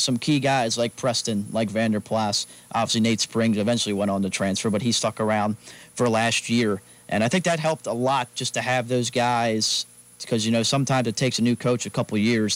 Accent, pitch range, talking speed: American, 105-130 Hz, 225 wpm